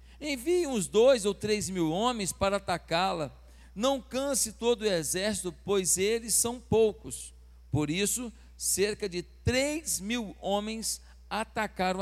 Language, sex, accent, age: Portuguese, male, Brazilian, 50-69